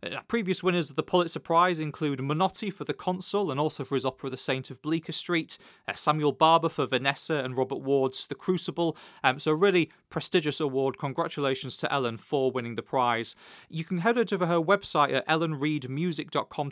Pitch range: 130-170 Hz